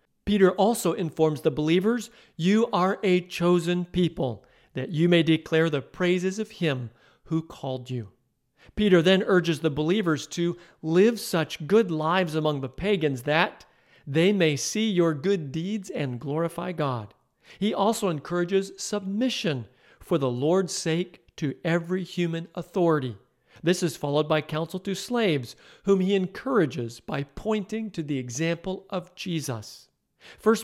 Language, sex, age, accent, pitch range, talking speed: English, male, 50-69, American, 150-195 Hz, 145 wpm